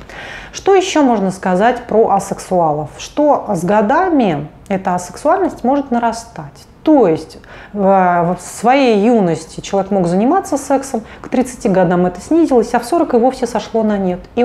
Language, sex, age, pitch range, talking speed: Russian, female, 30-49, 170-235 Hz, 150 wpm